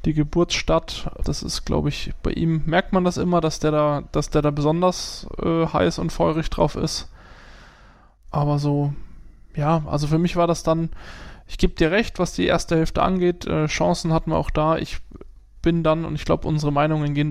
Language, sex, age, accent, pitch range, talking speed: German, male, 20-39, German, 145-165 Hz, 200 wpm